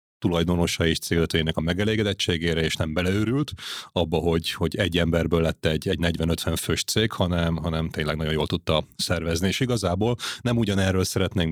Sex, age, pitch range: male, 30-49, 85-100 Hz